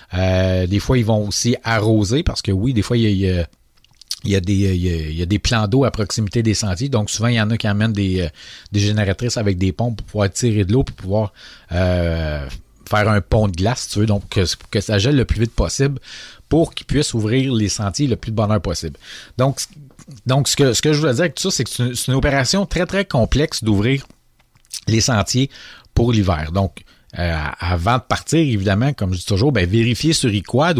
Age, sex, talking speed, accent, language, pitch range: 40-59, male, 235 wpm, Canadian, French, 100-125 Hz